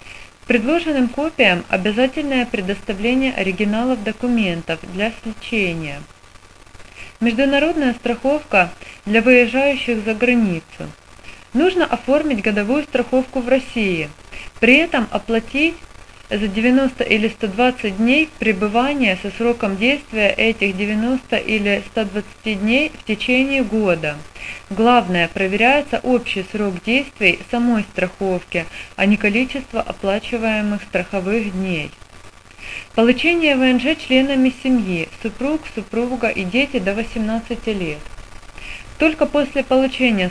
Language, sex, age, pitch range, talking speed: Russian, female, 30-49, 190-250 Hz, 100 wpm